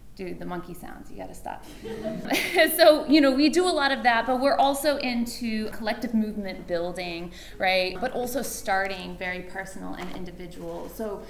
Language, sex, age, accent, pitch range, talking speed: English, female, 20-39, American, 180-235 Hz, 170 wpm